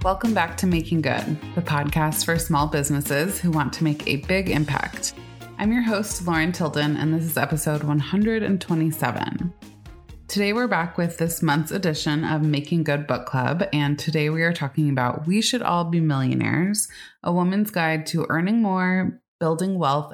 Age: 20-39